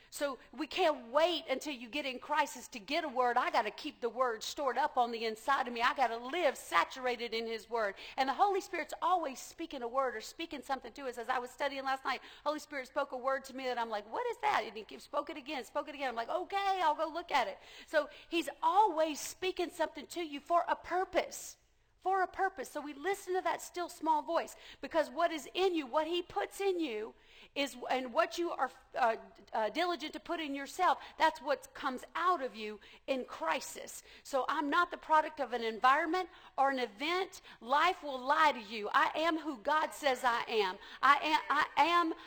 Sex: female